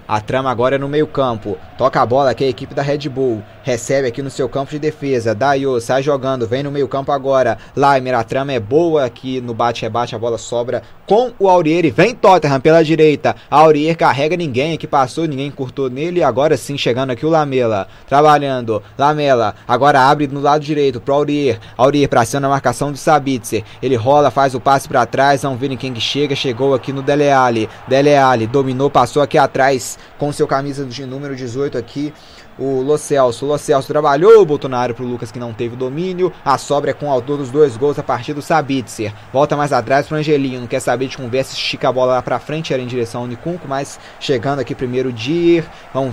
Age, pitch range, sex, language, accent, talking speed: 20-39, 125-145 Hz, male, Portuguese, Brazilian, 215 wpm